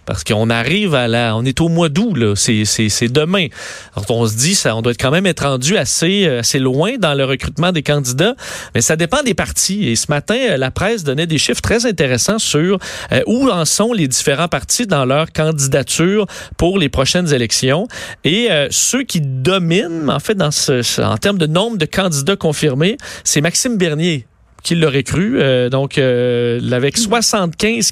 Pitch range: 130-190 Hz